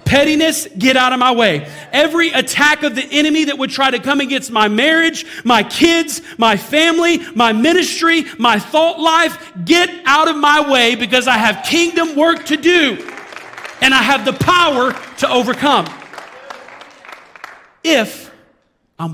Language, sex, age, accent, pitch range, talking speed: English, male, 40-59, American, 220-295 Hz, 155 wpm